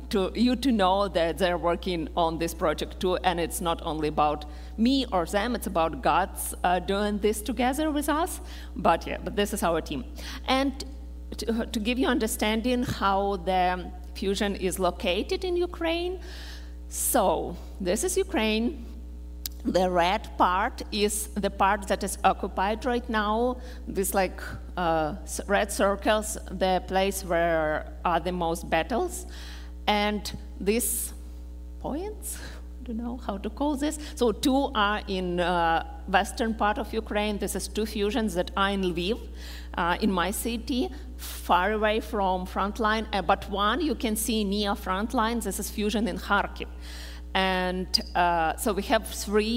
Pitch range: 170-220 Hz